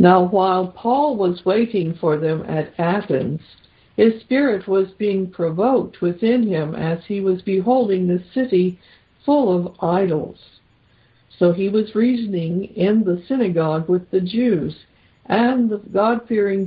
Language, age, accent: English, 60-79, American